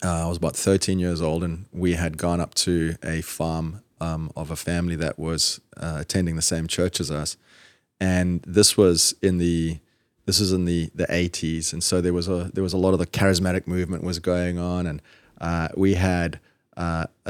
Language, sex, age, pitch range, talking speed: English, male, 30-49, 85-95 Hz, 210 wpm